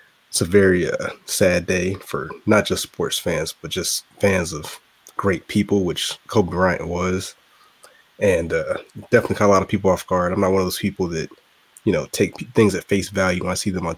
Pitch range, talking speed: 90-100 Hz, 220 wpm